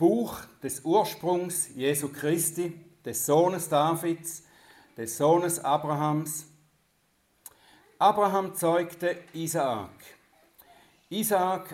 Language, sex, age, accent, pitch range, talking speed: German, male, 60-79, German, 145-185 Hz, 75 wpm